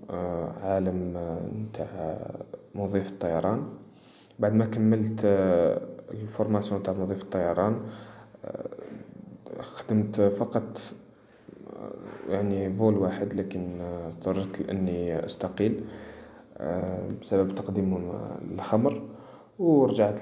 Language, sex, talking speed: Arabic, male, 70 wpm